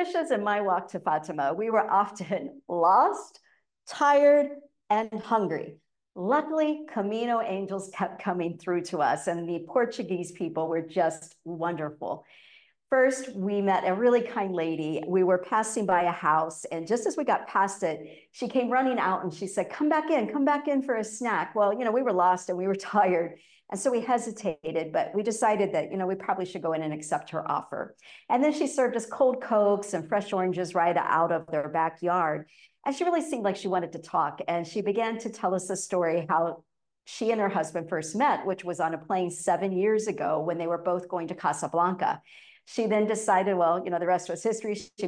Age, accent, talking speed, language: 50-69, American, 210 wpm, English